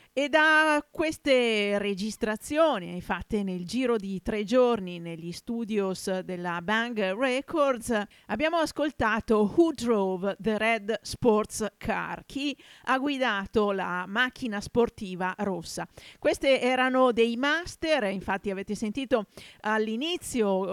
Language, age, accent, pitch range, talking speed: Italian, 50-69, native, 195-255 Hz, 110 wpm